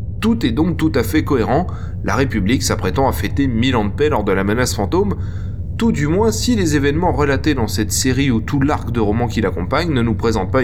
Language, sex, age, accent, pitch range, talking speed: French, male, 20-39, French, 95-115 Hz, 235 wpm